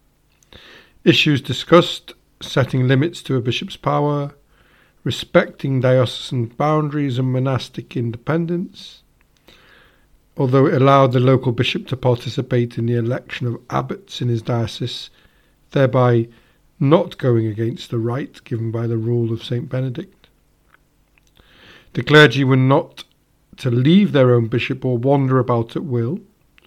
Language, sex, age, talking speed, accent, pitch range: English, male, 50-69, 130 wpm, British, 120-155 Hz